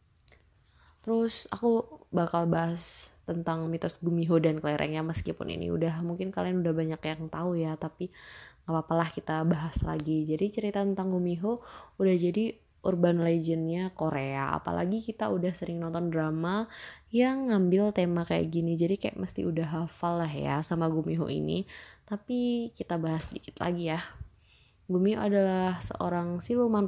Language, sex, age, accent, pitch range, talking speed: Indonesian, female, 20-39, native, 160-190 Hz, 145 wpm